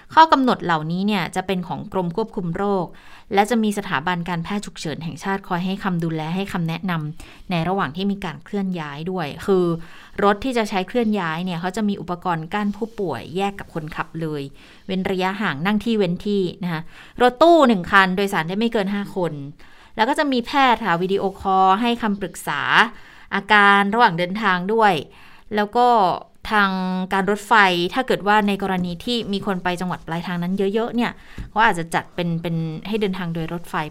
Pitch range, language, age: 170-205 Hz, Thai, 20-39